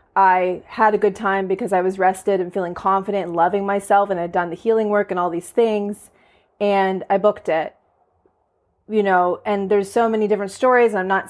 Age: 20-39